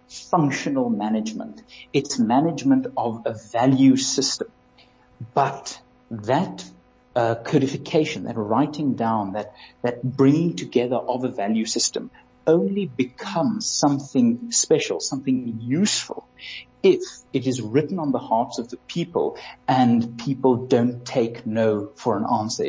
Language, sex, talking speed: English, male, 125 wpm